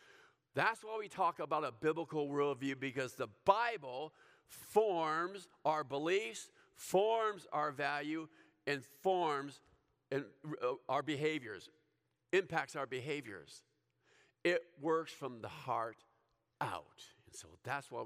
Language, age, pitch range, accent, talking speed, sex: English, 50-69, 135-200 Hz, American, 115 wpm, male